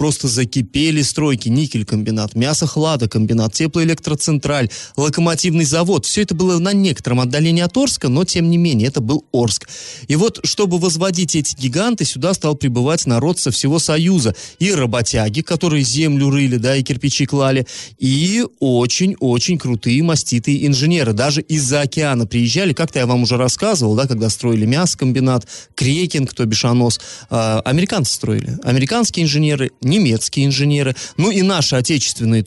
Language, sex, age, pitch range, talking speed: Russian, male, 30-49, 120-170 Hz, 145 wpm